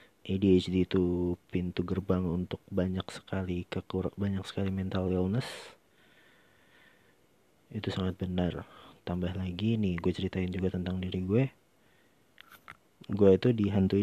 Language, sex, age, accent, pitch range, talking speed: Indonesian, male, 30-49, native, 95-110 Hz, 115 wpm